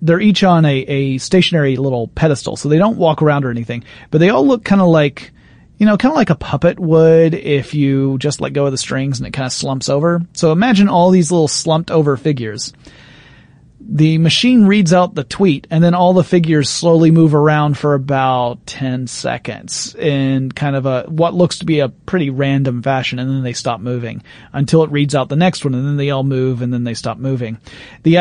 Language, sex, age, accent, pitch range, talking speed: English, male, 30-49, American, 135-170 Hz, 225 wpm